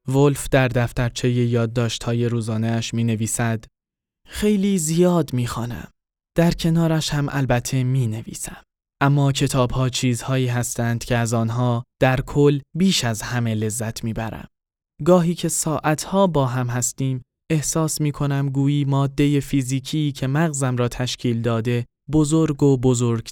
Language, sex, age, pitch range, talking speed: Persian, male, 10-29, 120-155 Hz, 130 wpm